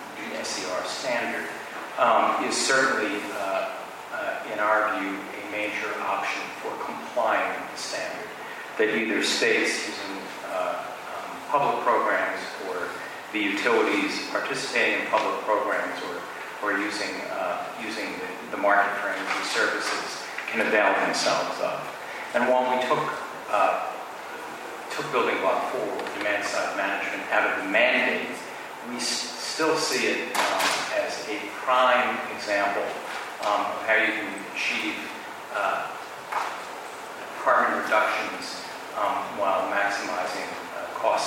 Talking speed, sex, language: 130 wpm, male, English